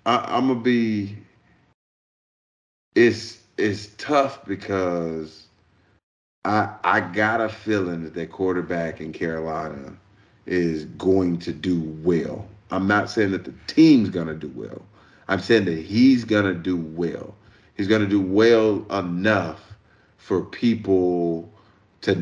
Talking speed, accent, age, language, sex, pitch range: 140 wpm, American, 30-49, English, male, 85-105 Hz